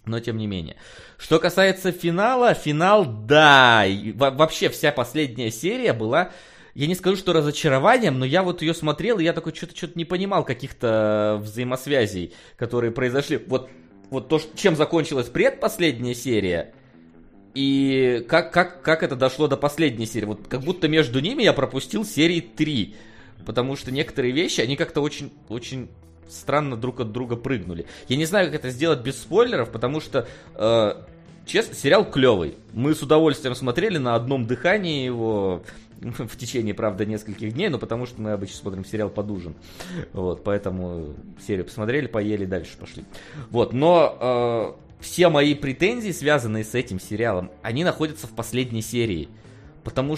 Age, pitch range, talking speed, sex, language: 20-39, 110-155 Hz, 155 wpm, male, Russian